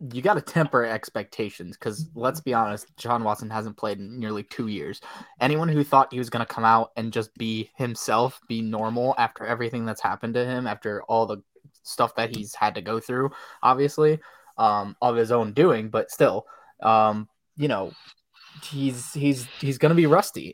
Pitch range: 115-140 Hz